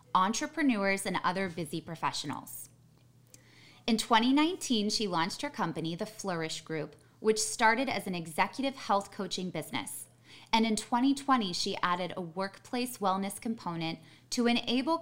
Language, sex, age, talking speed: English, female, 20-39, 130 wpm